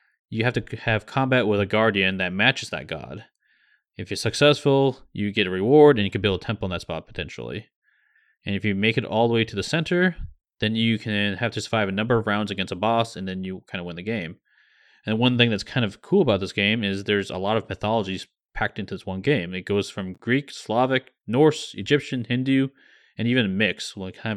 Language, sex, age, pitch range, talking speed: English, male, 30-49, 100-135 Hz, 235 wpm